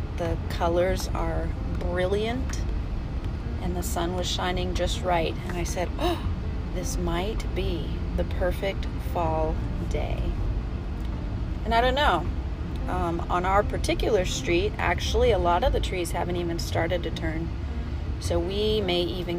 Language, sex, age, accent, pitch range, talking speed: English, female, 30-49, American, 85-130 Hz, 140 wpm